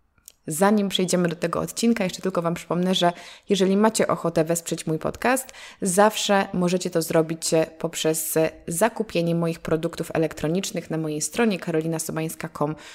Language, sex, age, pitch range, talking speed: Polish, female, 20-39, 160-190 Hz, 135 wpm